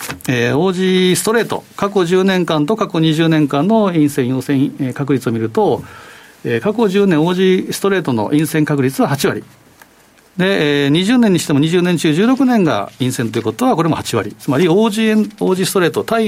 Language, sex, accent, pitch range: Japanese, male, native, 125-200 Hz